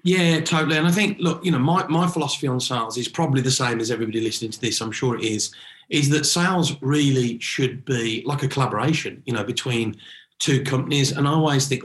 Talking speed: 225 wpm